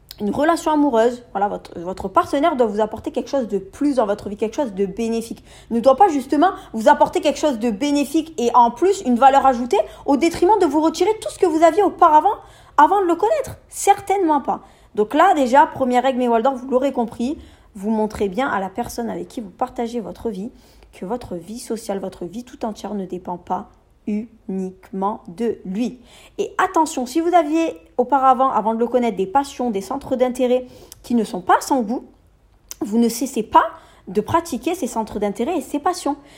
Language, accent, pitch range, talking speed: French, French, 225-310 Hz, 205 wpm